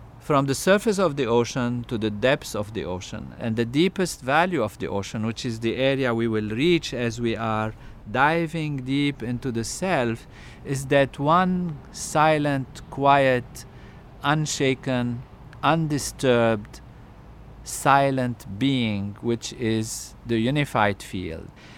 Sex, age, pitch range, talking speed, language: male, 50-69, 110-135 Hz, 130 wpm, English